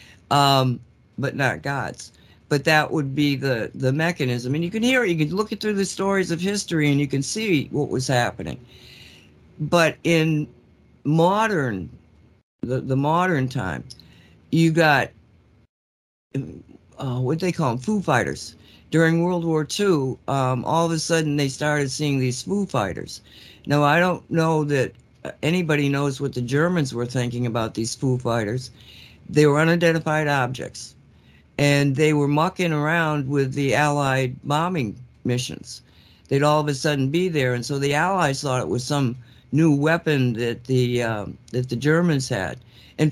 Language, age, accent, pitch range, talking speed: English, 60-79, American, 130-160 Hz, 165 wpm